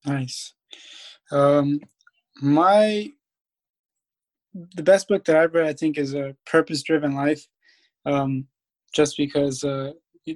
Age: 20-39